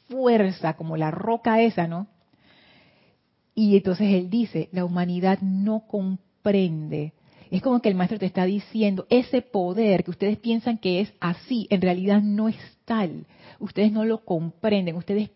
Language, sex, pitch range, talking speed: Spanish, female, 175-215 Hz, 155 wpm